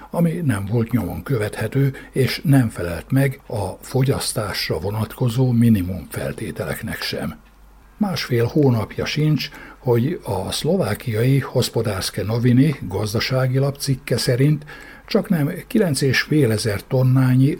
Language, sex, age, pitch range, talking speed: Hungarian, male, 60-79, 105-140 Hz, 100 wpm